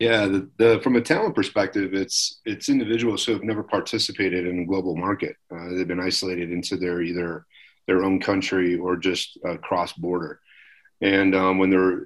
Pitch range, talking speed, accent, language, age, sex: 85-95 Hz, 185 wpm, American, English, 40-59, male